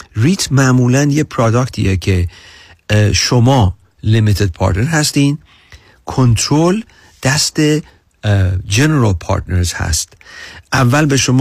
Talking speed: 90 wpm